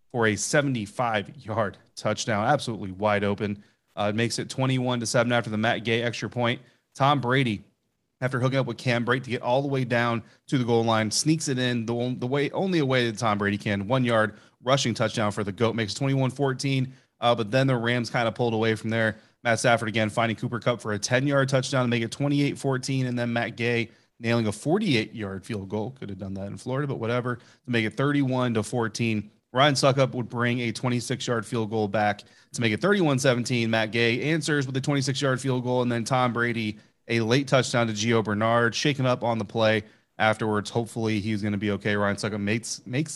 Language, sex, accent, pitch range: English, male, American, 110-130 Hz